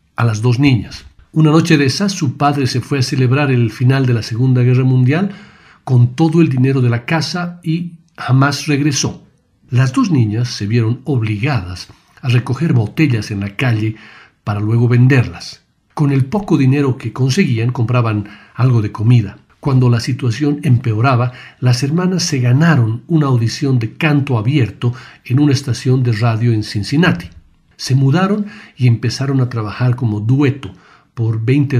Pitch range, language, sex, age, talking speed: 115-150 Hz, Spanish, male, 50-69, 160 wpm